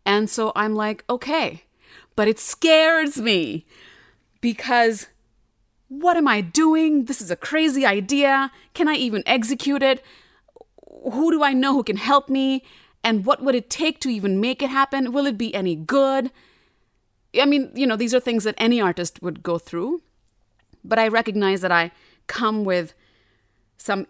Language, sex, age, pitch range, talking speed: English, female, 30-49, 180-265 Hz, 170 wpm